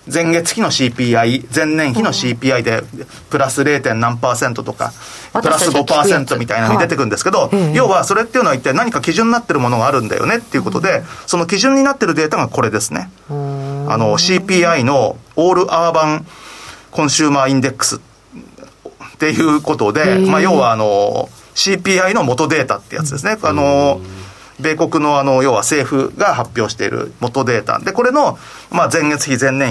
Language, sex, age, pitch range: Japanese, male, 40-59, 130-180 Hz